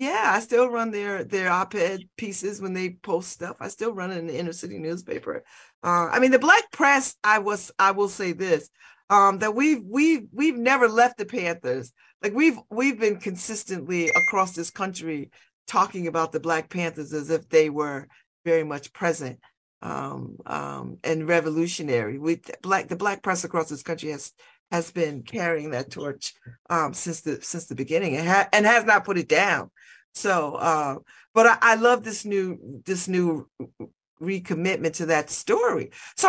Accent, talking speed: American, 185 wpm